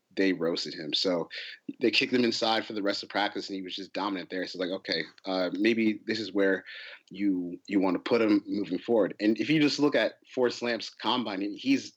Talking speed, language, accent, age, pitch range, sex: 230 wpm, English, American, 30-49, 100-125 Hz, male